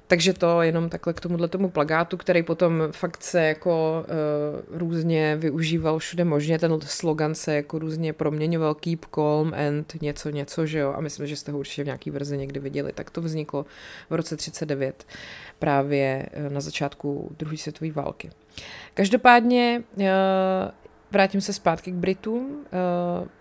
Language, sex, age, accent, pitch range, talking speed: Czech, female, 30-49, native, 155-190 Hz, 155 wpm